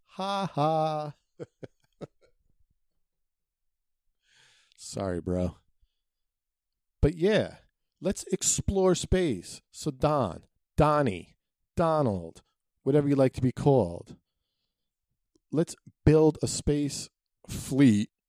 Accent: American